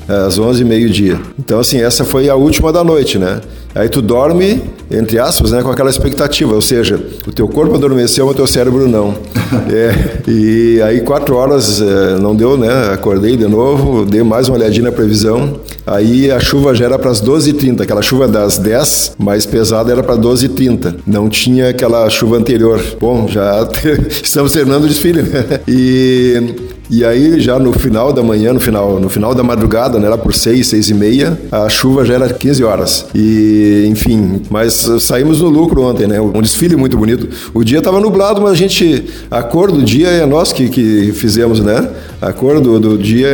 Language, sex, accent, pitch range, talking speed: Portuguese, male, Brazilian, 110-135 Hz, 205 wpm